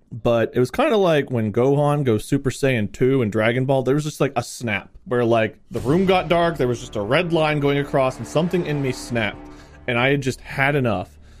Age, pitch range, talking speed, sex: 30-49, 120-150 Hz, 240 wpm, male